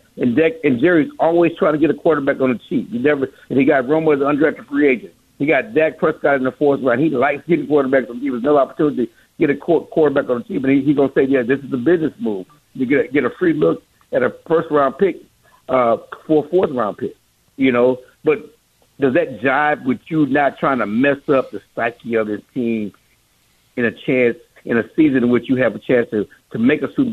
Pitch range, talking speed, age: 115-145 Hz, 245 wpm, 60-79